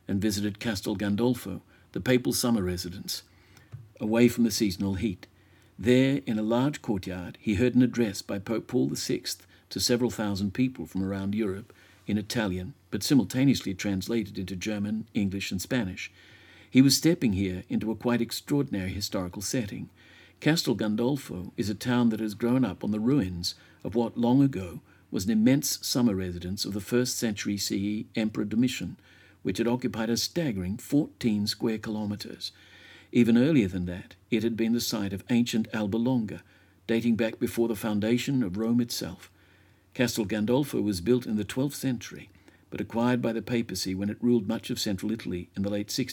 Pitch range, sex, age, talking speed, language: 95-120 Hz, male, 60-79, 175 wpm, English